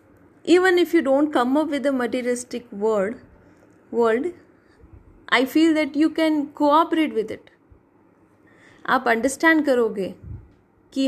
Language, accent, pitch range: Hindi, native, 235-305 Hz